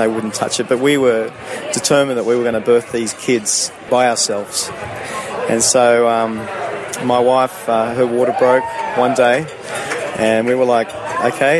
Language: English